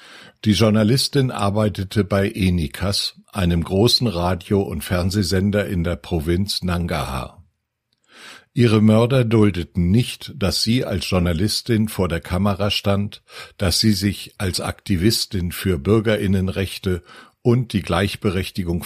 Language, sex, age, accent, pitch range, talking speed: German, male, 60-79, German, 90-110 Hz, 115 wpm